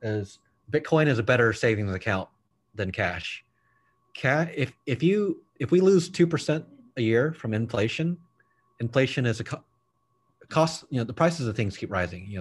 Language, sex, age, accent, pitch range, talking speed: English, male, 30-49, American, 110-150 Hz, 175 wpm